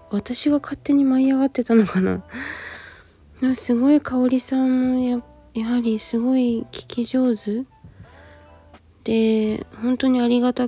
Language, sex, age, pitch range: Japanese, female, 20-39, 205-250 Hz